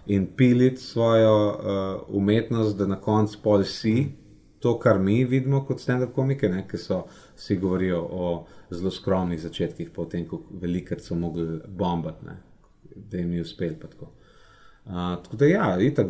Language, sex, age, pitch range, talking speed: English, male, 30-49, 95-120 Hz, 155 wpm